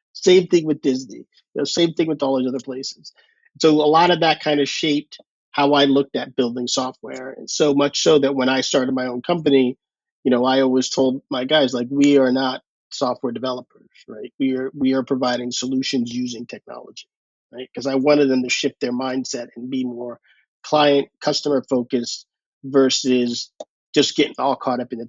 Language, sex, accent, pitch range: English, male, American, 130-145 Hz